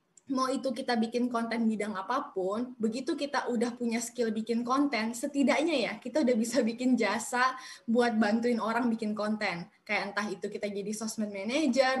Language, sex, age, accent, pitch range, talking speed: Indonesian, female, 10-29, native, 215-265 Hz, 165 wpm